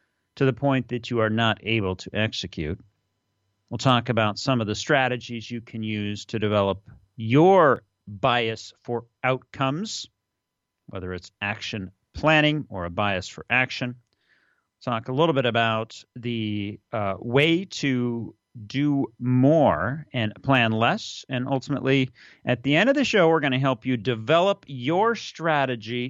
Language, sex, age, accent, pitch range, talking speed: English, male, 40-59, American, 110-140 Hz, 150 wpm